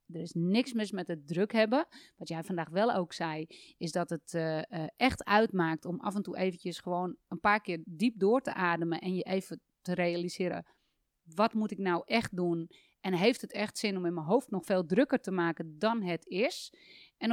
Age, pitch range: 30-49, 175-220 Hz